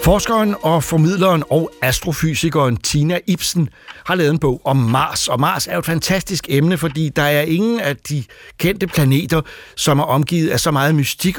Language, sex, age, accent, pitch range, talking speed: Danish, male, 60-79, native, 130-170 Hz, 180 wpm